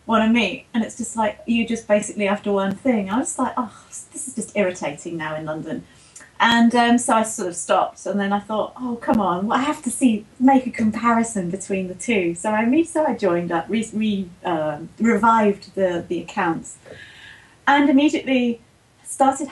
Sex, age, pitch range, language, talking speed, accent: female, 30-49, 195-255 Hz, English, 205 wpm, British